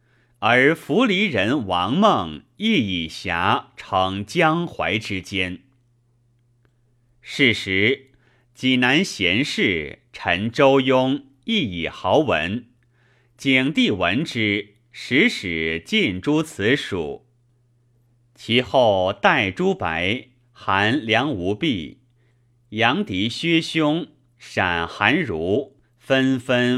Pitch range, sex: 120-130 Hz, male